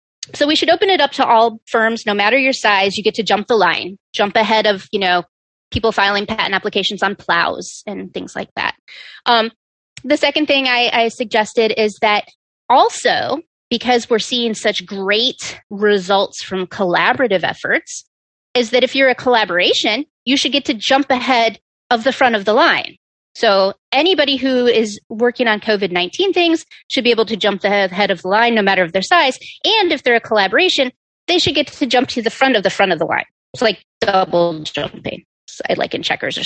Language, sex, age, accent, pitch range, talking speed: English, female, 30-49, American, 200-270 Hz, 200 wpm